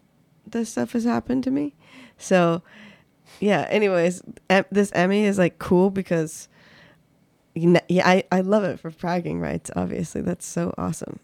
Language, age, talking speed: English, 20-39, 145 wpm